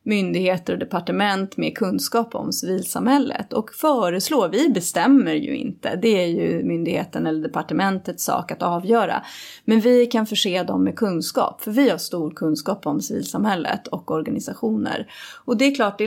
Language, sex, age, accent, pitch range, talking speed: Swedish, female, 30-49, native, 175-235 Hz, 160 wpm